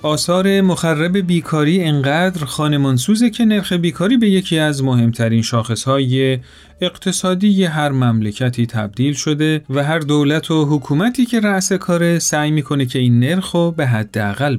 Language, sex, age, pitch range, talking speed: Persian, male, 40-59, 125-175 Hz, 135 wpm